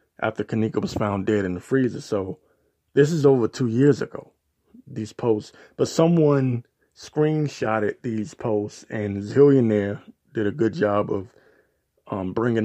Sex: male